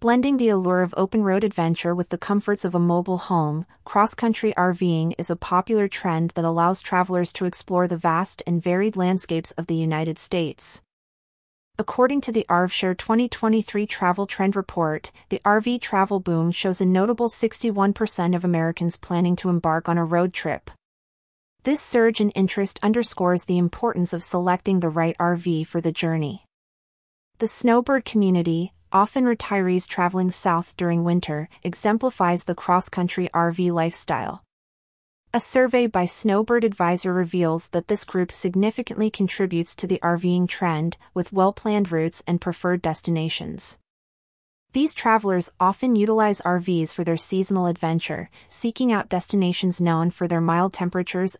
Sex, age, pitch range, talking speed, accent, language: female, 30-49, 170-205 Hz, 145 wpm, American, English